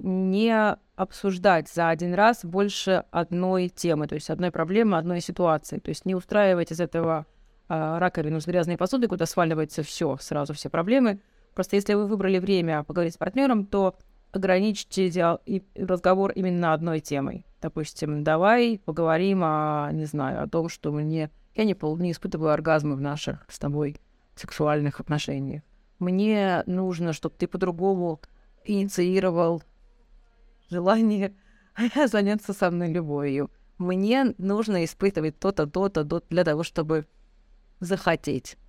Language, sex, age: Russian, female, 20-39